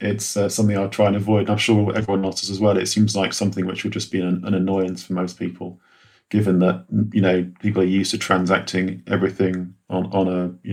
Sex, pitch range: male, 90-100 Hz